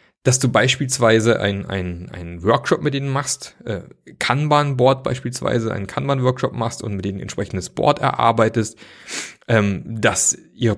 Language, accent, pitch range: German, German, 105-130 Hz